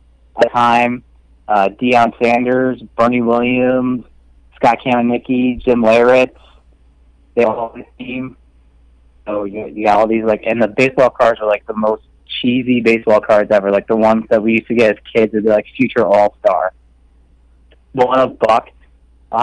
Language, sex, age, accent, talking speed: English, male, 30-49, American, 165 wpm